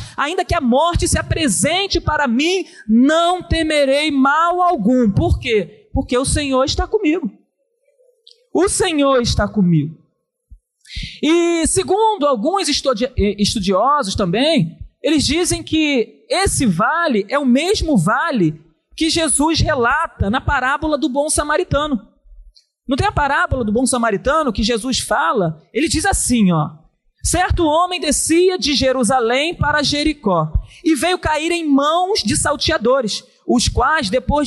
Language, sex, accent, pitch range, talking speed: Portuguese, male, Brazilian, 255-350 Hz, 130 wpm